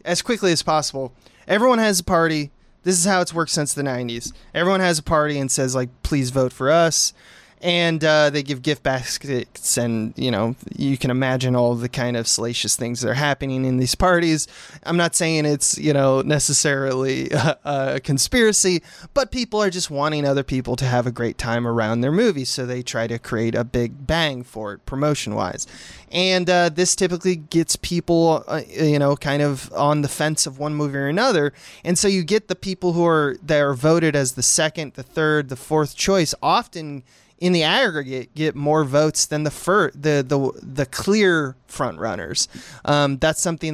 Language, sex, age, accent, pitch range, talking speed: English, male, 20-39, American, 125-165 Hz, 200 wpm